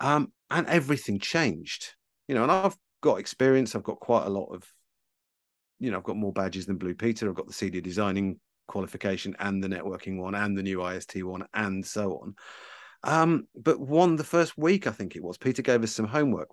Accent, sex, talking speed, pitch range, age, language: British, male, 210 wpm, 100-140 Hz, 40-59, English